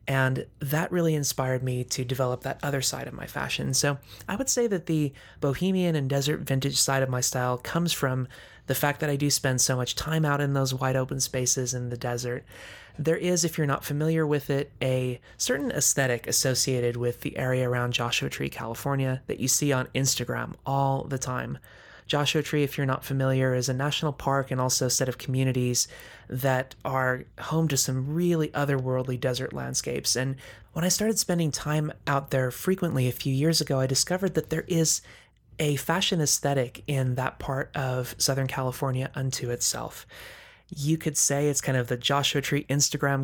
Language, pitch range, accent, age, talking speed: English, 125-150 Hz, American, 20-39, 190 wpm